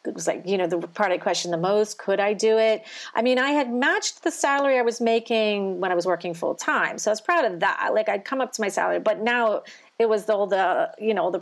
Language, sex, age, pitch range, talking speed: English, female, 40-59, 185-245 Hz, 280 wpm